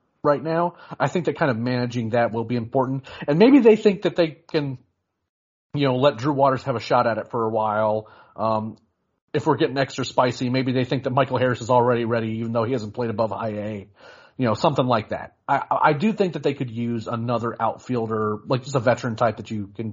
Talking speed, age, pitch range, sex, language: 235 wpm, 40-59, 115-145 Hz, male, English